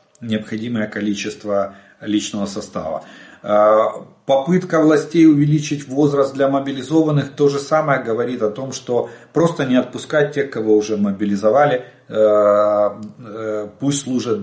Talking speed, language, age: 110 wpm, Russian, 40-59